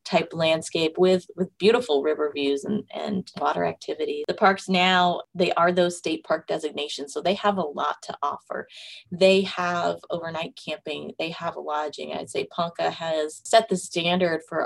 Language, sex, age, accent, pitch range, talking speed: English, female, 20-39, American, 155-185 Hz, 170 wpm